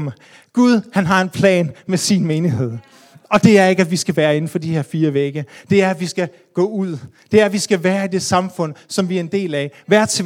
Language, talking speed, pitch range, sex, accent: Danish, 270 wpm, 170-220 Hz, male, native